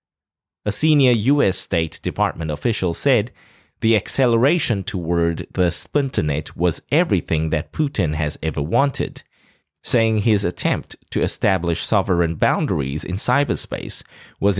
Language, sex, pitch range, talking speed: English, male, 90-125 Hz, 120 wpm